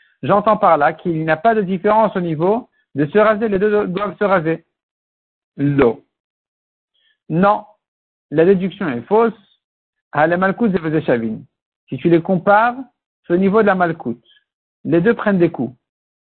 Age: 60-79